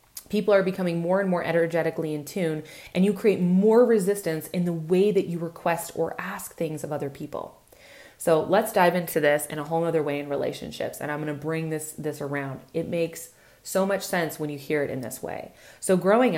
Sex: female